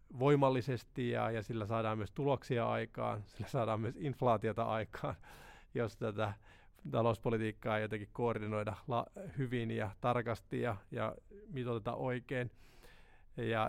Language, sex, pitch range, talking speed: Finnish, male, 110-130 Hz, 120 wpm